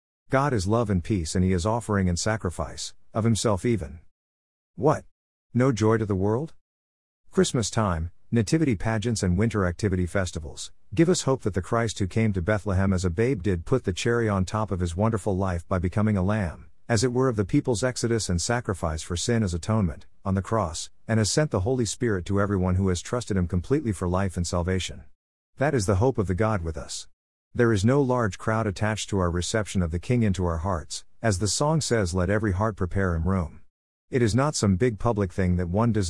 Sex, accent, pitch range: male, American, 90-115 Hz